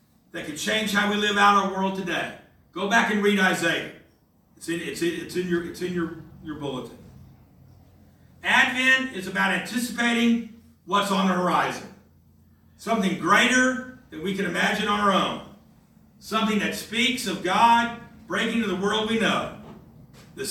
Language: English